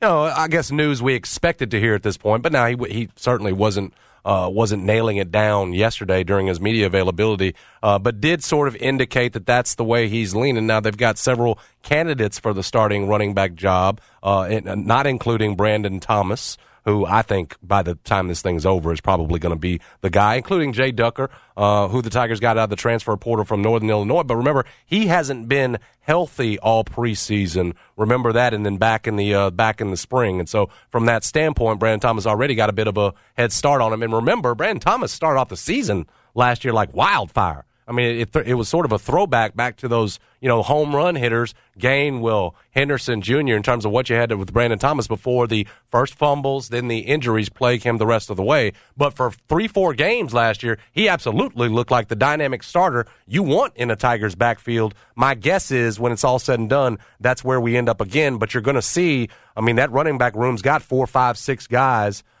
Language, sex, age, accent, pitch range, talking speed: English, male, 40-59, American, 105-125 Hz, 225 wpm